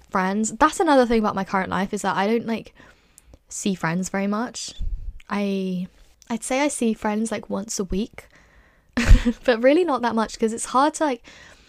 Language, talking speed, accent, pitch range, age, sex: English, 190 wpm, British, 190-230 Hz, 10-29, female